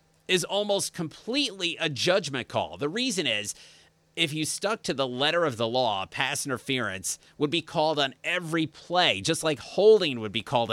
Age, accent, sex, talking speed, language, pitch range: 30-49, American, male, 180 wpm, English, 125-160 Hz